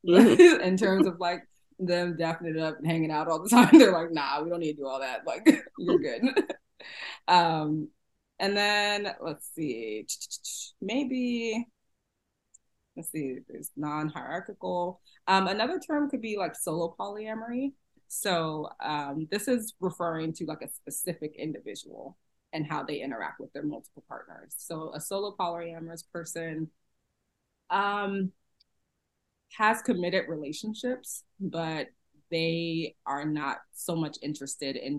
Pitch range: 150-195 Hz